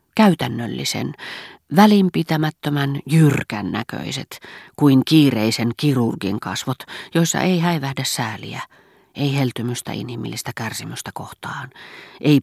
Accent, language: native, Finnish